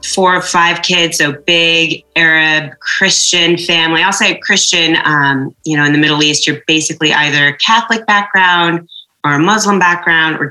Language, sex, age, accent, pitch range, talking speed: English, female, 30-49, American, 145-180 Hz, 165 wpm